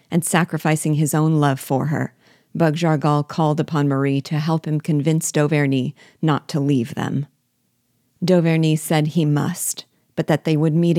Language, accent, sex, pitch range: English, American, female, 140-160 Hz